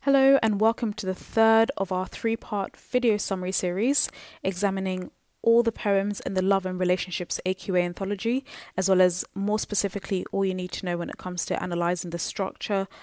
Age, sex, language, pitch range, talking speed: 20-39, female, English, 175-205 Hz, 185 wpm